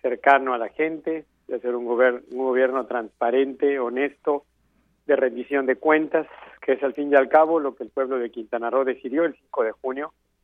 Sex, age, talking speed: male, 50-69, 195 wpm